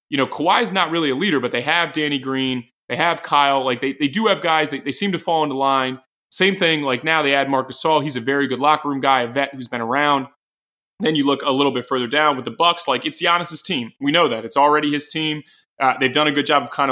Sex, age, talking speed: male, 20-39, 275 wpm